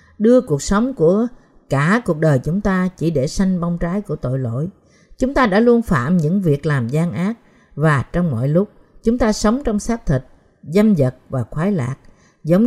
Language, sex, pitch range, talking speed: Vietnamese, female, 150-210 Hz, 205 wpm